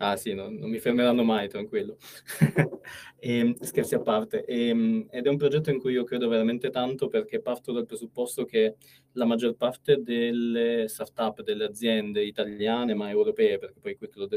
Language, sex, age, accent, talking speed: Italian, male, 20-39, native, 170 wpm